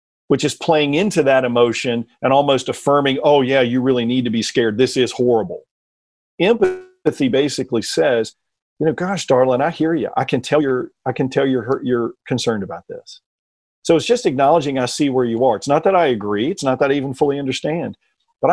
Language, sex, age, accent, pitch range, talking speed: English, male, 50-69, American, 135-195 Hz, 195 wpm